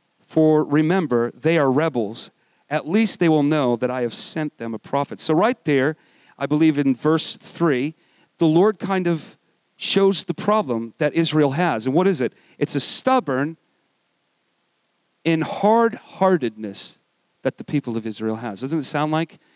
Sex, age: male, 40-59